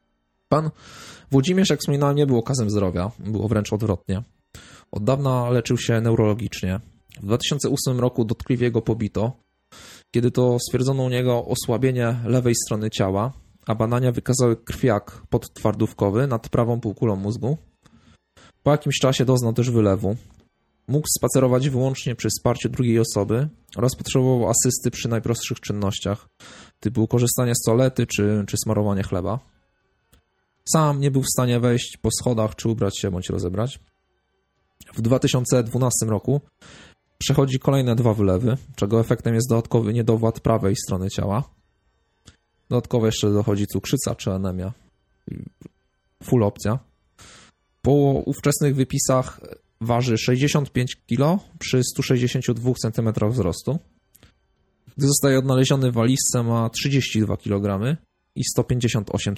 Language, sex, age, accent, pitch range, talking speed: Polish, male, 20-39, native, 105-130 Hz, 125 wpm